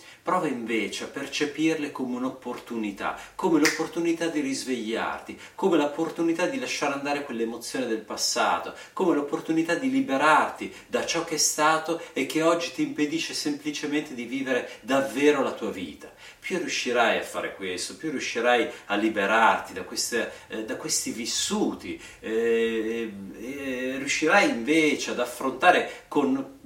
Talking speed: 135 wpm